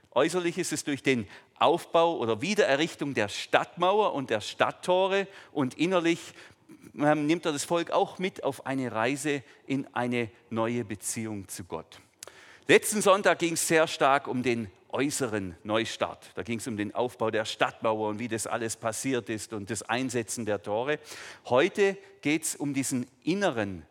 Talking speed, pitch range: 165 wpm, 120-155 Hz